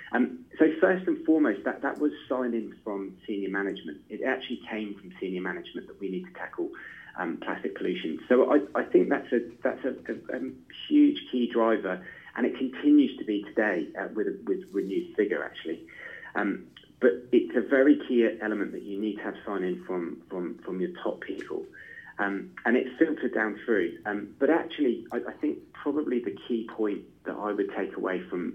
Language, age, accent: English, 30-49, British